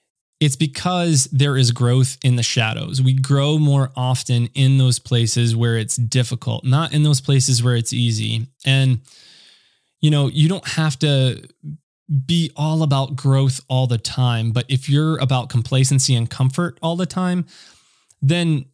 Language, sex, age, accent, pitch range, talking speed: English, male, 20-39, American, 125-145 Hz, 160 wpm